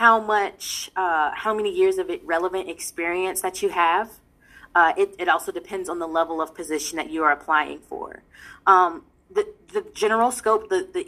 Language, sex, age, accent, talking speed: English, female, 20-39, American, 185 wpm